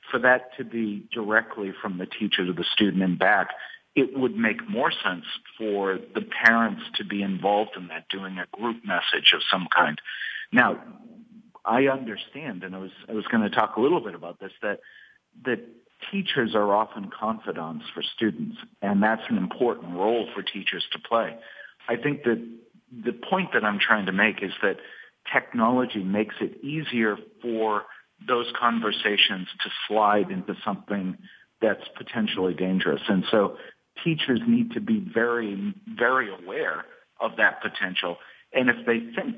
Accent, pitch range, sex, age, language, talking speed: American, 100-130 Hz, male, 50-69, English, 165 wpm